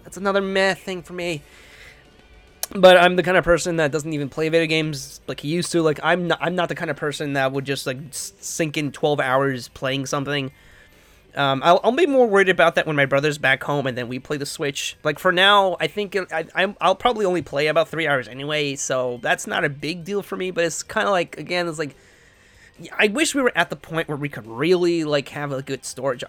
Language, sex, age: English, male, 20-39